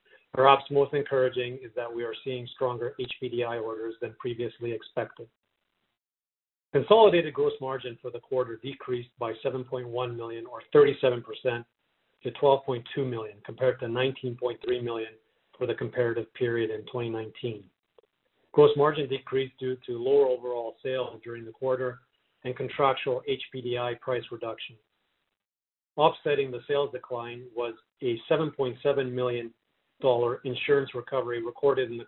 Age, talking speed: 40-59, 130 wpm